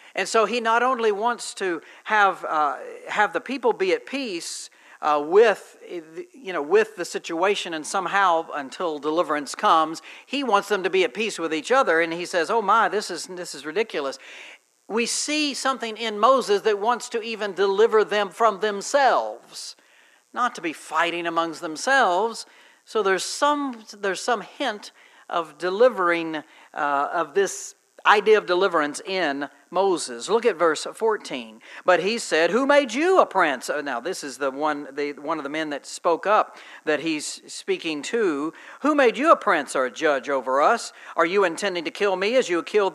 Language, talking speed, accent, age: English, 180 wpm, American, 60-79